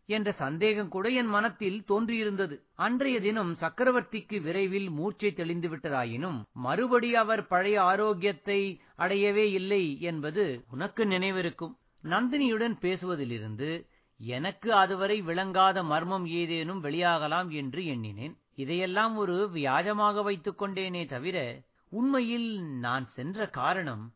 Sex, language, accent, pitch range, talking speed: male, Tamil, native, 160-210 Hz, 100 wpm